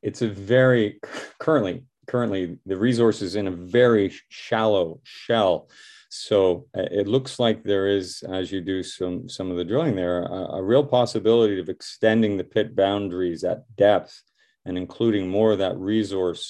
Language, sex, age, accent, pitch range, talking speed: English, male, 40-59, American, 90-110 Hz, 165 wpm